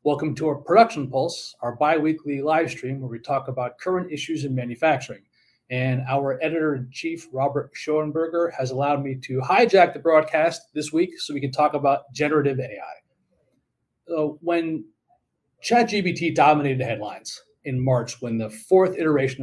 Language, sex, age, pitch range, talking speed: English, male, 30-49, 130-165 Hz, 155 wpm